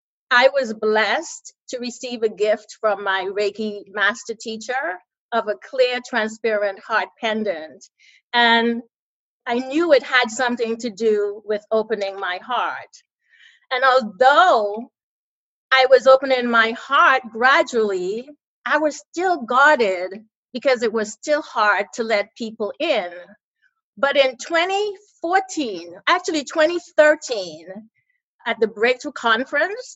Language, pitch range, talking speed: English, 210-285 Hz, 120 wpm